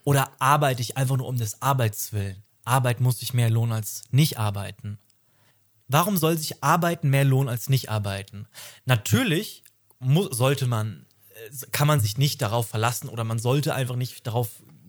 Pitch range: 115-140 Hz